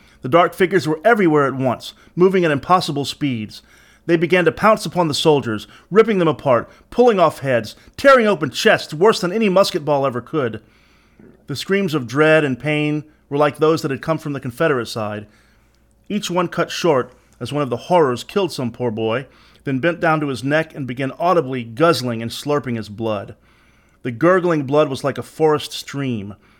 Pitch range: 120-170 Hz